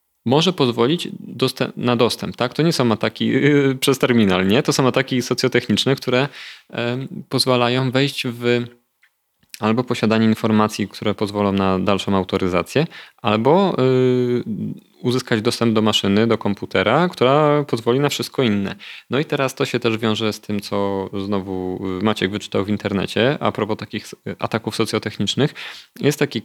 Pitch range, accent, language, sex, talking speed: 105-130 Hz, native, Polish, male, 150 wpm